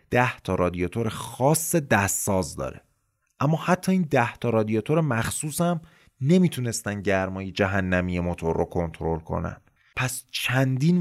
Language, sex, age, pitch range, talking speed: Persian, male, 30-49, 95-150 Hz, 125 wpm